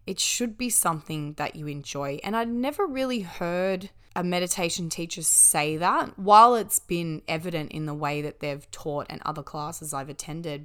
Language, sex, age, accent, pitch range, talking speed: English, female, 20-39, Australian, 150-200 Hz, 180 wpm